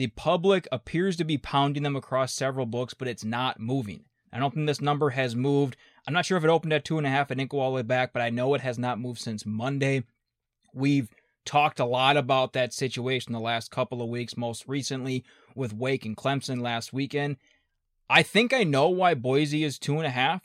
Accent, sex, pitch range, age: American, male, 125-145 Hz, 20-39